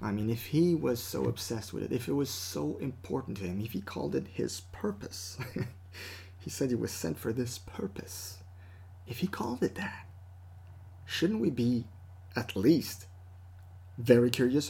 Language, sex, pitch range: English, male, 90-130 Hz